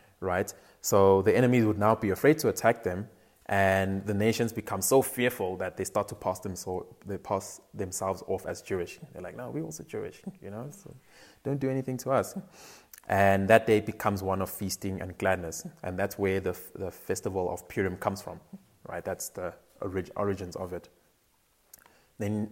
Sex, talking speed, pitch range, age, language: male, 190 wpm, 95-115 Hz, 20-39, English